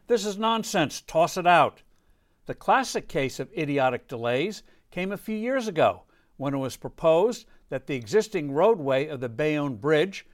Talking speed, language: 170 wpm, English